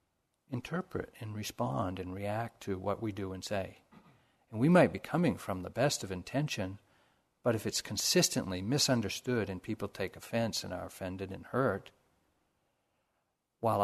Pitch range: 95-120 Hz